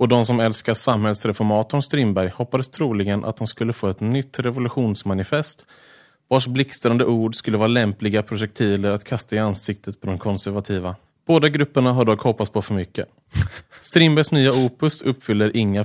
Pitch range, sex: 110-140 Hz, male